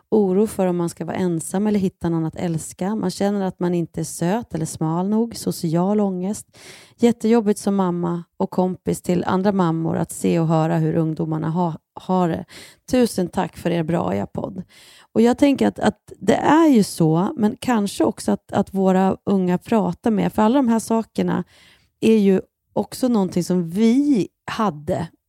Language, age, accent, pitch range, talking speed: Swedish, 30-49, native, 165-205 Hz, 185 wpm